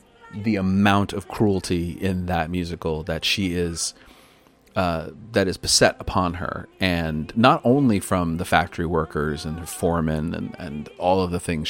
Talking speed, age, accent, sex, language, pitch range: 165 wpm, 30-49, American, male, English, 85-105 Hz